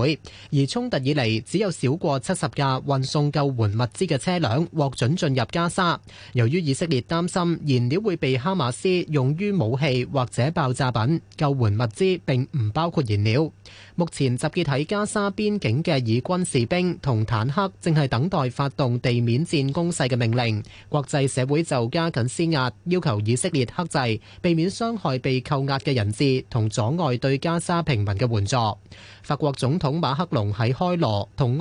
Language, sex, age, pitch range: Chinese, male, 20-39, 120-165 Hz